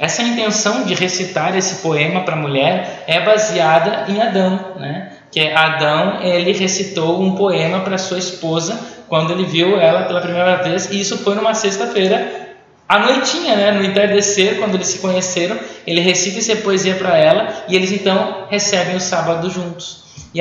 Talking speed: 175 wpm